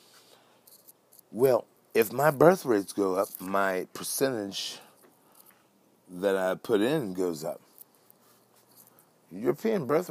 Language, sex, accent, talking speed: English, male, American, 100 wpm